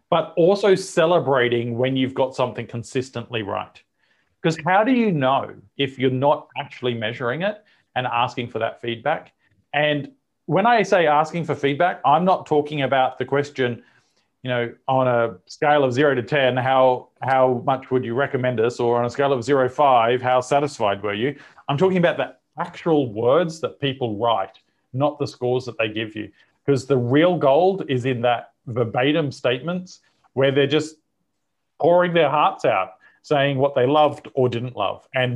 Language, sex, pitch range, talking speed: English, male, 125-150 Hz, 180 wpm